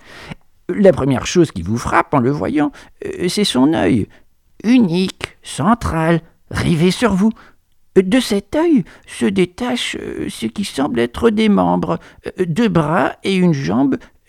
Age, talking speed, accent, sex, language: 60-79, 140 wpm, French, male, French